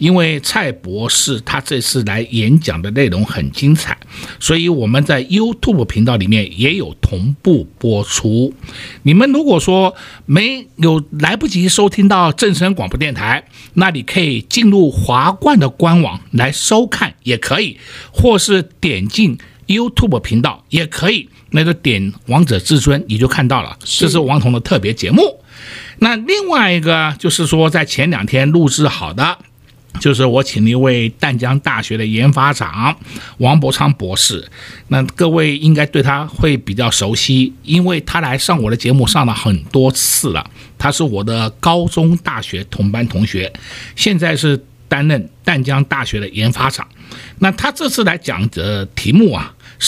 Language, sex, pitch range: Chinese, male, 115-170 Hz